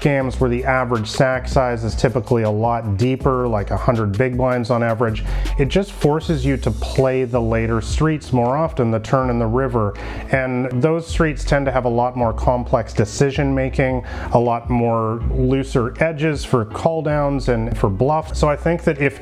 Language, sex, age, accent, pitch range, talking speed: English, male, 30-49, American, 115-140 Hz, 195 wpm